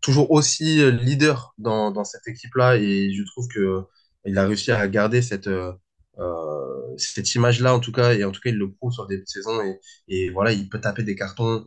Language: French